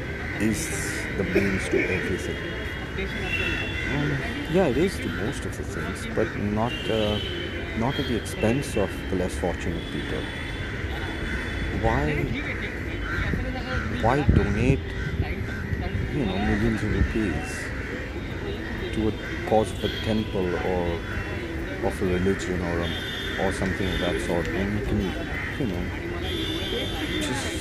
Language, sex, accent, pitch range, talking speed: English, male, Indian, 85-110 Hz, 120 wpm